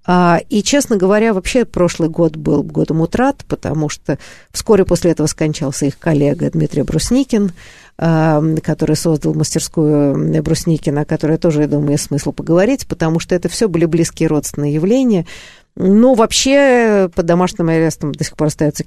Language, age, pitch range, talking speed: Russian, 50-69, 155-220 Hz, 155 wpm